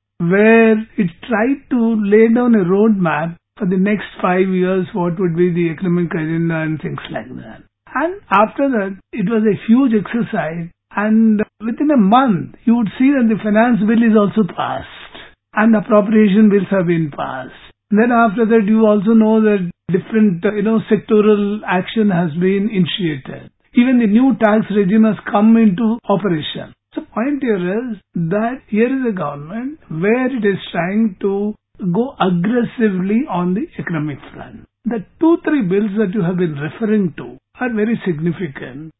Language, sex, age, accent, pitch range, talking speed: English, male, 50-69, Indian, 185-225 Hz, 165 wpm